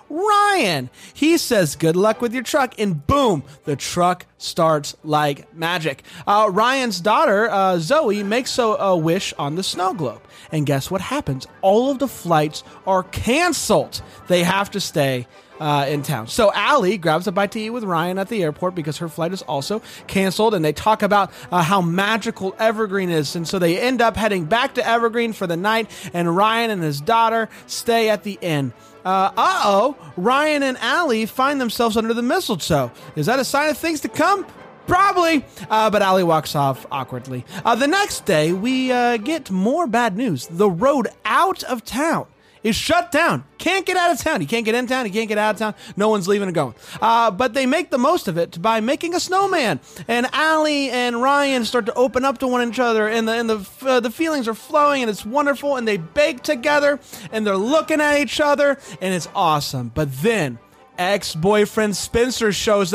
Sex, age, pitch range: male, 30-49, 175-255 Hz